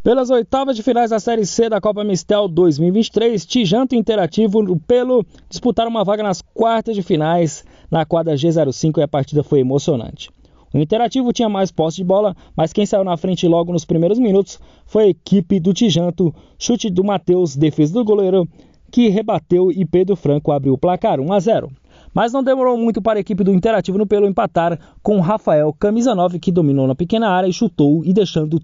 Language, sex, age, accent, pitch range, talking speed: Portuguese, male, 20-39, Brazilian, 160-220 Hz, 190 wpm